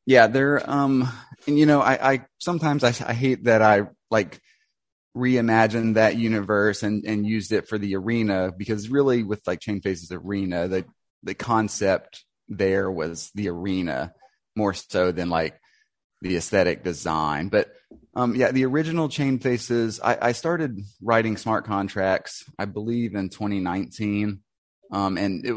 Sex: male